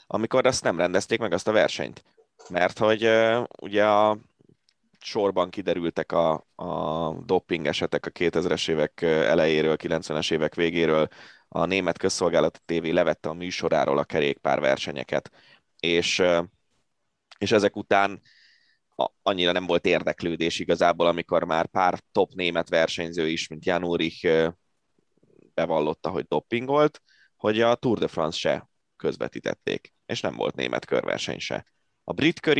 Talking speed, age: 140 wpm, 20-39